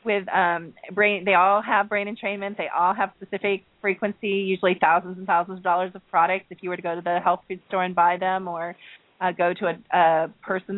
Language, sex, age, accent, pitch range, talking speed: English, female, 30-49, American, 170-200 Hz, 230 wpm